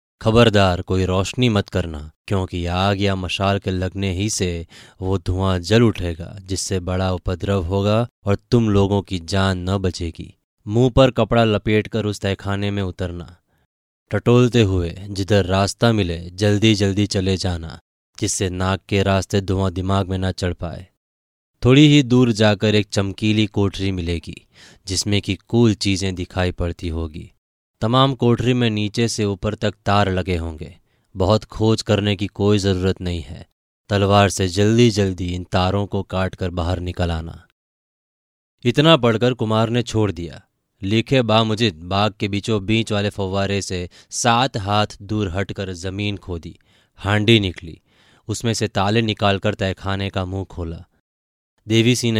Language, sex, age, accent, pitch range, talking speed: Hindi, male, 20-39, native, 95-110 Hz, 155 wpm